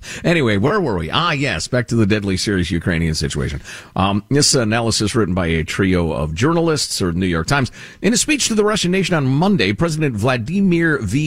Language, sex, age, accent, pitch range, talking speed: English, male, 50-69, American, 105-175 Hz, 200 wpm